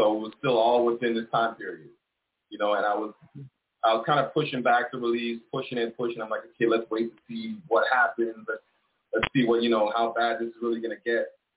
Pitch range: 115-125 Hz